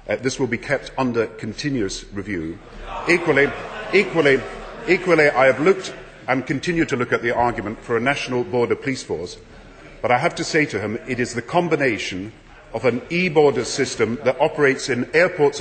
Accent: British